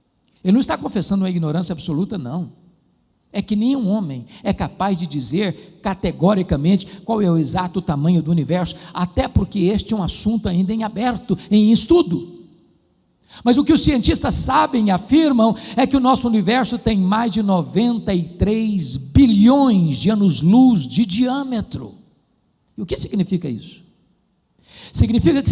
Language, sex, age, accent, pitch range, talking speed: Portuguese, male, 60-79, Brazilian, 185-250 Hz, 150 wpm